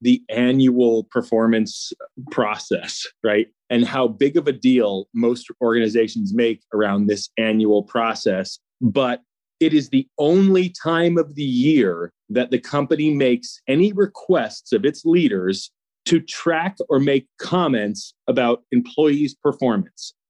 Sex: male